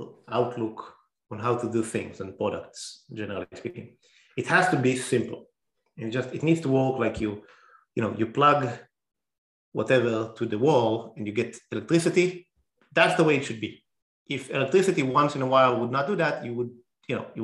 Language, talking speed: English, 195 wpm